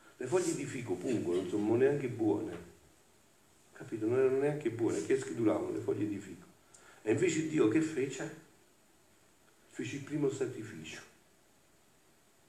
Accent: native